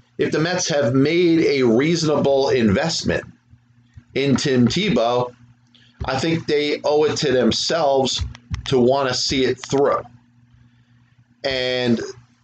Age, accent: 30-49, American